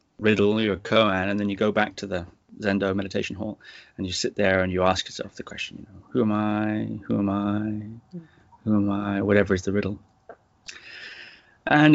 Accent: British